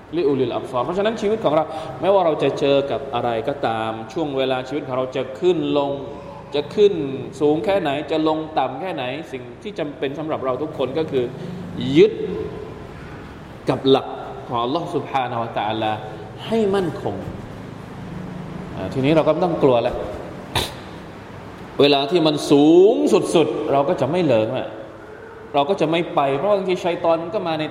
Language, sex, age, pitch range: Thai, male, 20-39, 130-165 Hz